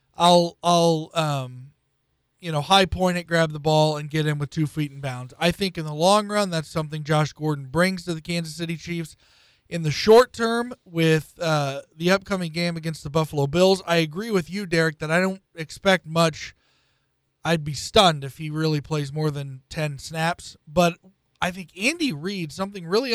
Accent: American